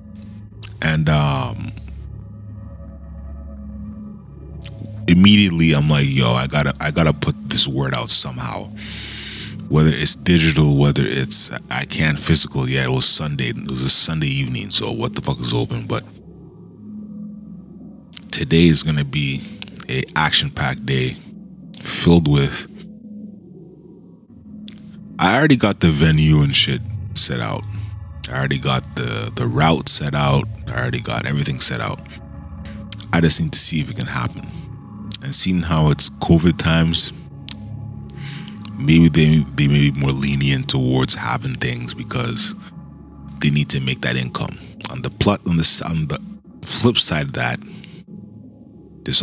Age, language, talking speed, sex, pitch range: 20-39, English, 140 wpm, male, 70-105 Hz